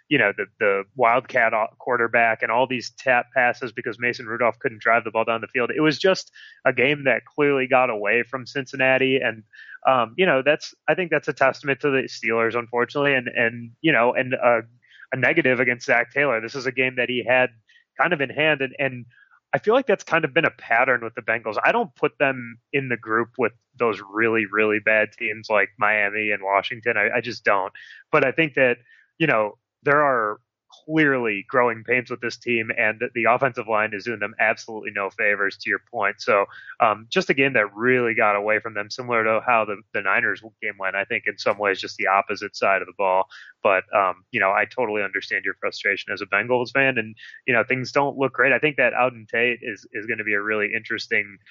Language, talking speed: English, 225 wpm